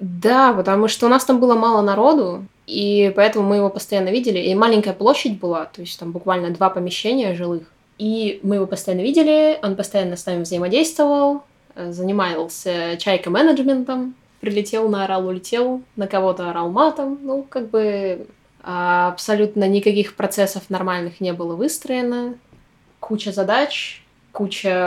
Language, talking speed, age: Russian, 140 wpm, 20-39